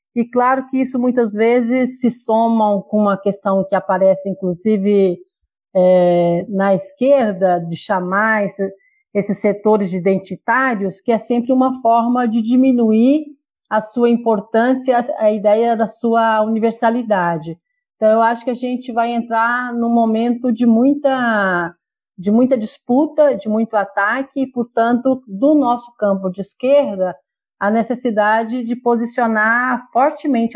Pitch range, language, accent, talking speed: 195-245 Hz, Portuguese, Brazilian, 135 wpm